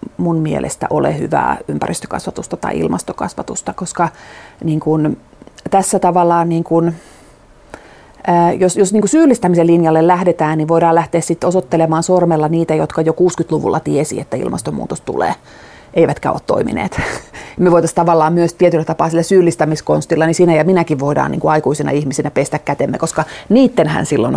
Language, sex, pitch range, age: Finnish, female, 160-190 Hz, 30-49